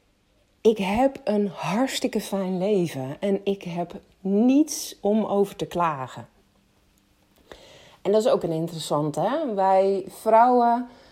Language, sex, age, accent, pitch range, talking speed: Dutch, female, 30-49, Dutch, 160-205 Hz, 120 wpm